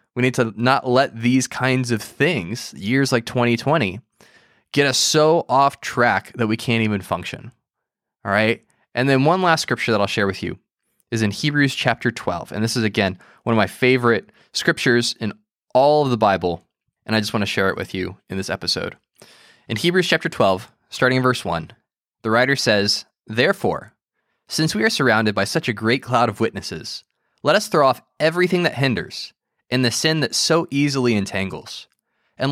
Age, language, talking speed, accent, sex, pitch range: 20-39, English, 190 wpm, American, male, 110-145 Hz